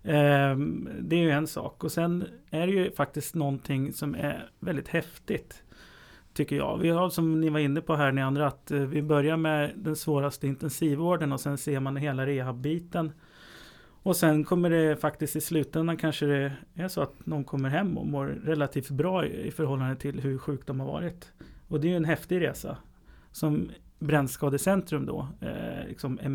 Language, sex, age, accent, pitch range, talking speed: English, male, 30-49, Swedish, 140-160 Hz, 180 wpm